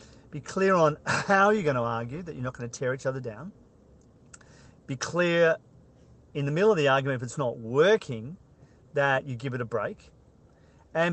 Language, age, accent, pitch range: English, 40-59, Australian, 120-150 Hz